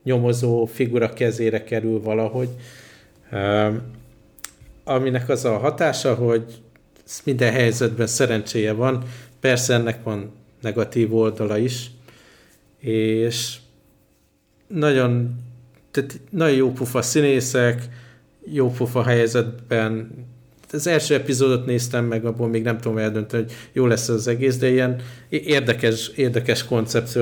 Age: 50-69